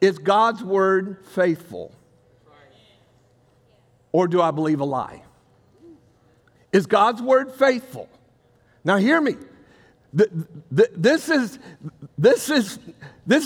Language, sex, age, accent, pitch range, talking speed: English, male, 60-79, American, 155-220 Hz, 80 wpm